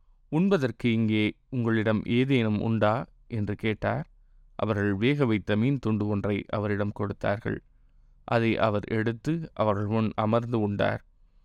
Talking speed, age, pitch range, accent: 115 wpm, 20-39, 105-125 Hz, native